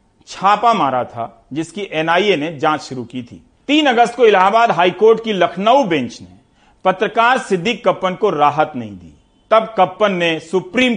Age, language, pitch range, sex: 40-59, Hindi, 155-210 Hz, male